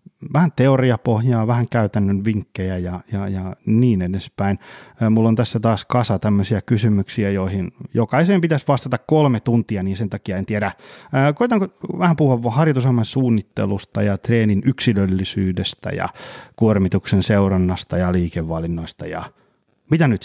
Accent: native